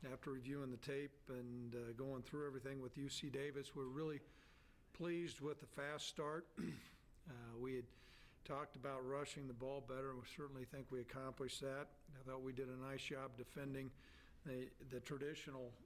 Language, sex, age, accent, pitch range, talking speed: English, male, 50-69, American, 125-145 Hz, 175 wpm